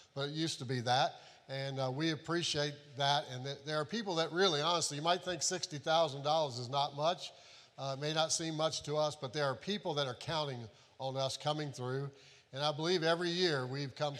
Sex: male